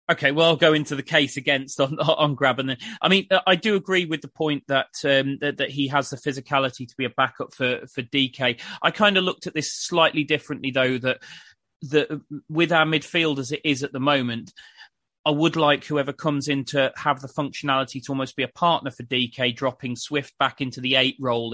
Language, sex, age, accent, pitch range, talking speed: English, male, 30-49, British, 130-170 Hz, 225 wpm